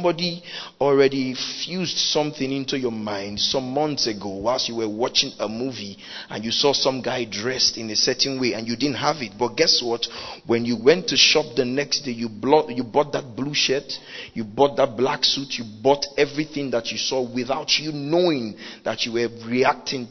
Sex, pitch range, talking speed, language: male, 115-135 Hz, 195 wpm, English